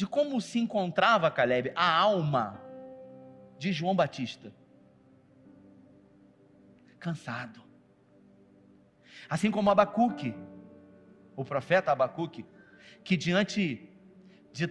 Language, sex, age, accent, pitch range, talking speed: Portuguese, male, 40-59, Brazilian, 155-210 Hz, 80 wpm